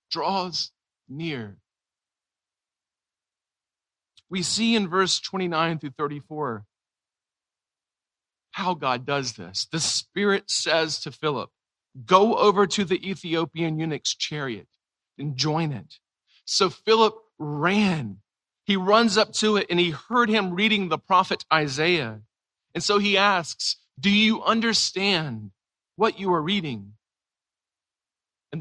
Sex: male